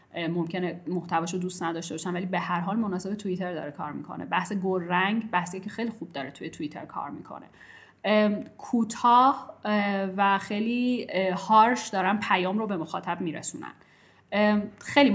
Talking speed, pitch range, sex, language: 150 wpm, 180-220 Hz, female, Persian